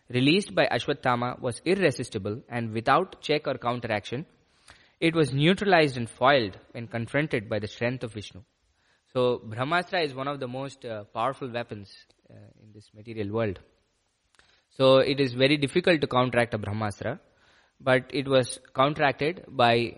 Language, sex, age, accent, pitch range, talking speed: English, male, 20-39, Indian, 110-145 Hz, 155 wpm